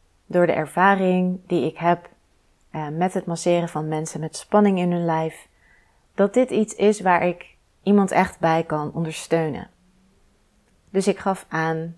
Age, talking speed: 30-49, 160 wpm